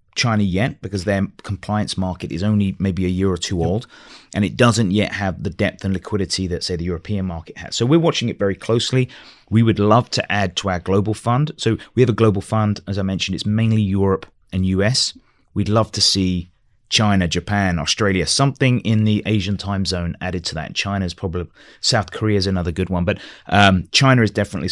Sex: male